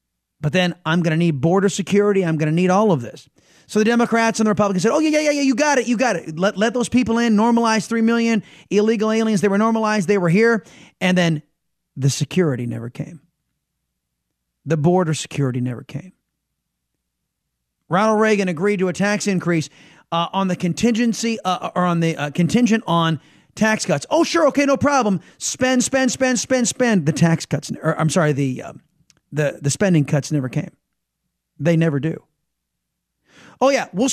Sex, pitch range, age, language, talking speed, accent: male, 145-210 Hz, 30-49, English, 190 wpm, American